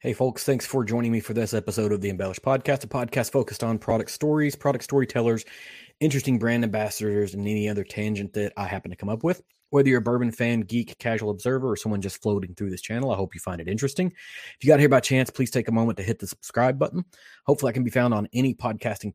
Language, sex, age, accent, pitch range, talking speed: English, male, 20-39, American, 100-120 Hz, 250 wpm